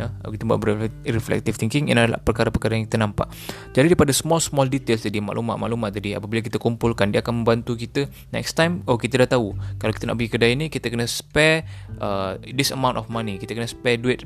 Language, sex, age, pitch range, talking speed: Malay, male, 20-39, 110-140 Hz, 205 wpm